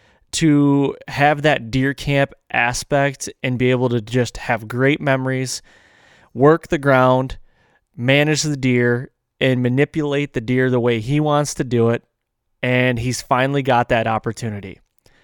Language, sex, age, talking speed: English, male, 20-39, 145 wpm